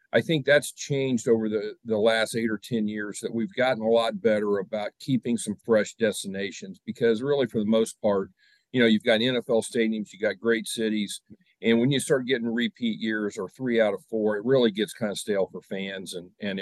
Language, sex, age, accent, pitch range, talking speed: English, male, 40-59, American, 110-130 Hz, 220 wpm